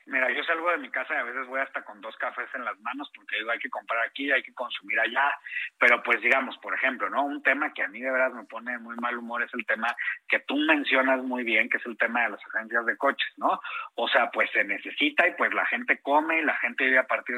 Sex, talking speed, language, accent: male, 270 wpm, Spanish, Mexican